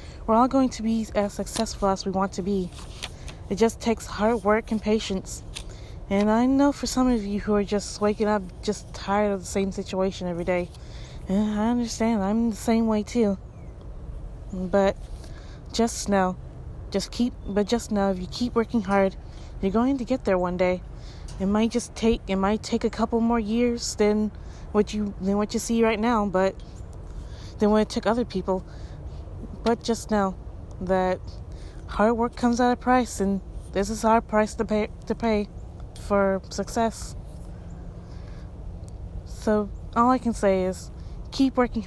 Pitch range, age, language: 185-225 Hz, 20-39, English